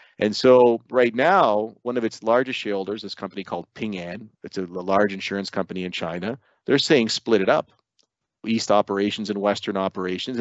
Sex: male